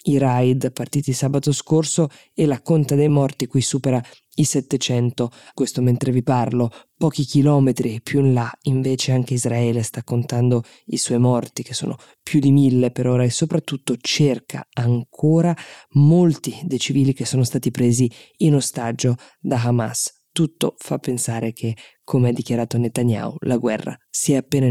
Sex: female